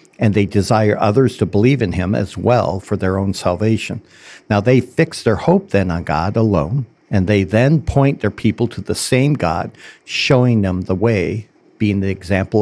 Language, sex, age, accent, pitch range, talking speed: English, male, 60-79, American, 95-125 Hz, 190 wpm